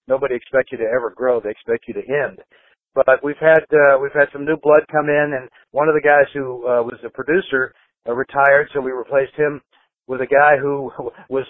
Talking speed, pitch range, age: 225 wpm, 125-155 Hz, 60-79